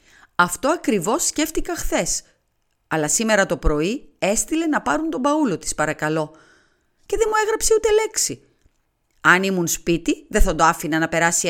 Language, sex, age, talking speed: Greek, female, 30-49, 155 wpm